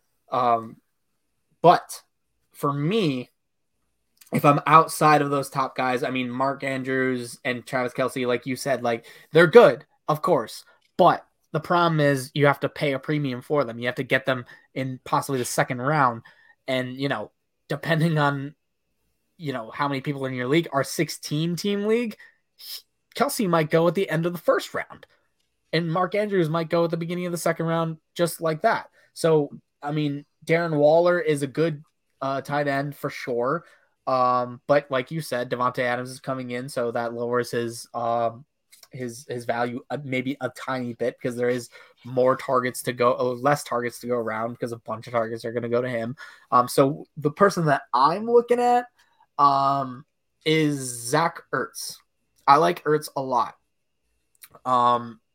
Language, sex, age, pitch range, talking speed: English, male, 20-39, 125-160 Hz, 180 wpm